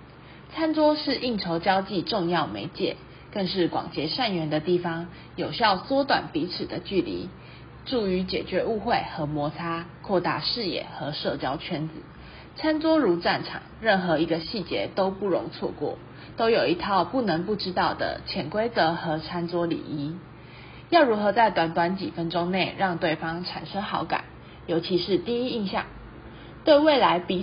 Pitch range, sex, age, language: 165-230 Hz, female, 20-39, Chinese